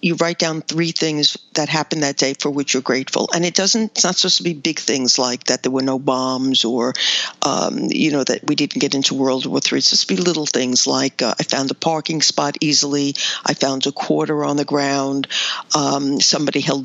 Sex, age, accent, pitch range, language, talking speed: female, 50-69, American, 145-170 Hz, English, 230 wpm